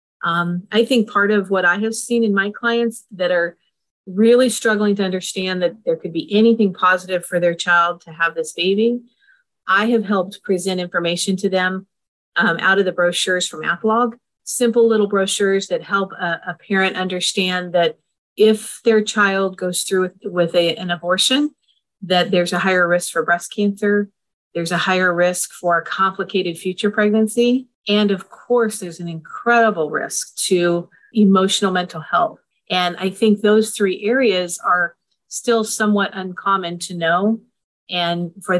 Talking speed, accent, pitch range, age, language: 165 wpm, American, 175-215 Hz, 40-59, English